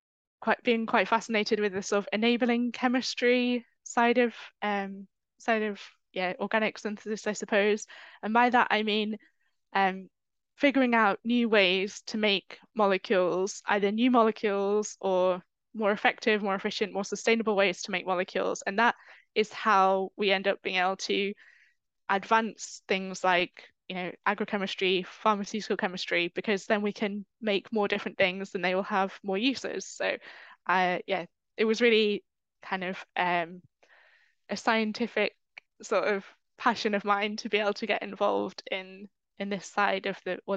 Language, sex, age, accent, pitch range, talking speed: English, female, 10-29, British, 195-225 Hz, 160 wpm